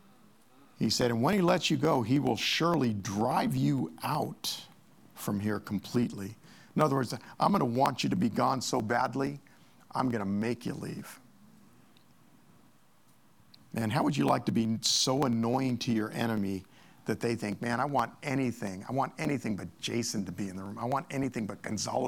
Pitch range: 120-195 Hz